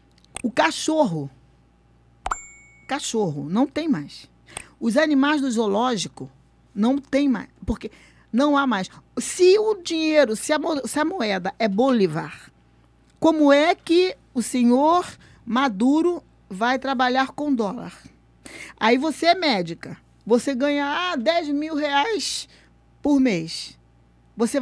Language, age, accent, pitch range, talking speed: Portuguese, 20-39, Brazilian, 190-290 Hz, 115 wpm